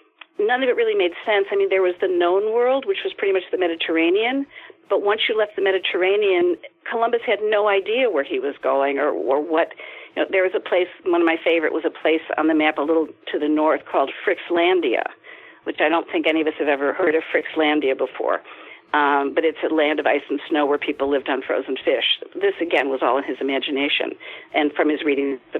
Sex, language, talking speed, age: female, English, 230 wpm, 50-69